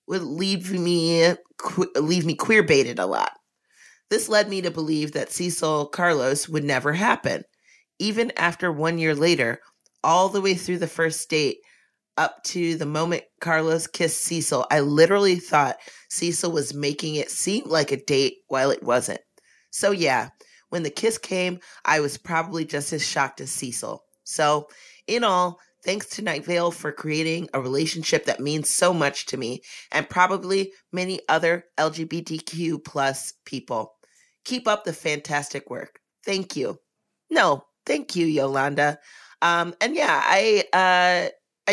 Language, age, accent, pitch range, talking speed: English, 30-49, American, 155-190 Hz, 155 wpm